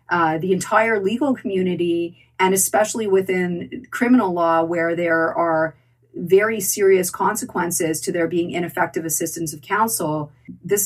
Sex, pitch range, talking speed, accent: female, 165-190 Hz, 135 wpm, American